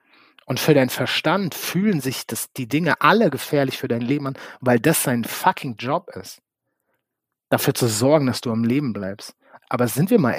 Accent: German